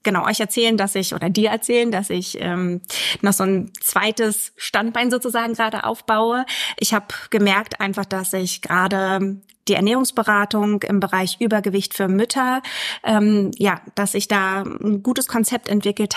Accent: German